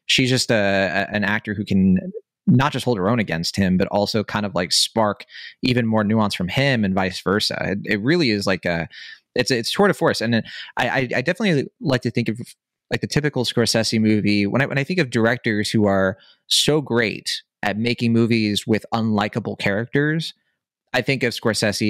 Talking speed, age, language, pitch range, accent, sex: 210 wpm, 30-49, English, 105-145 Hz, American, male